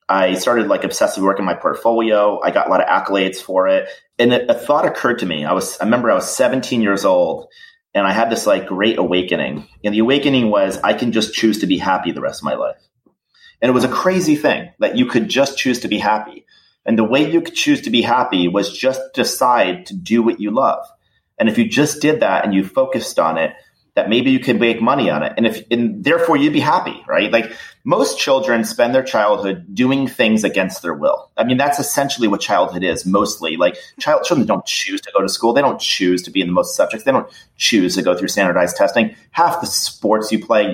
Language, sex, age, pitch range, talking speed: English, male, 30-49, 105-155 Hz, 235 wpm